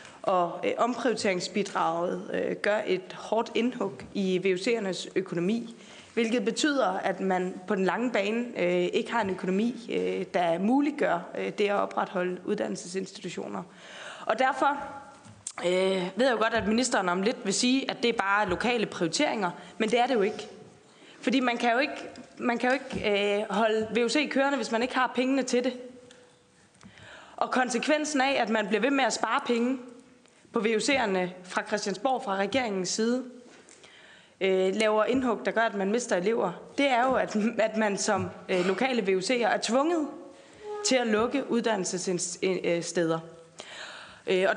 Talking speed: 145 wpm